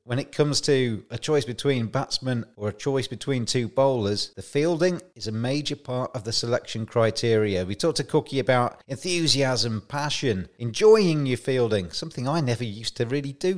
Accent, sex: British, male